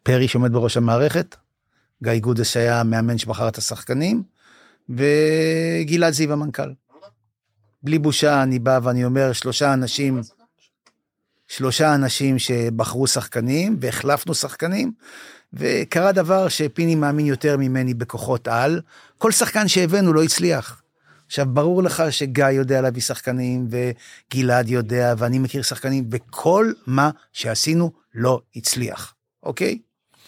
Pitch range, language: 125-160 Hz, Hebrew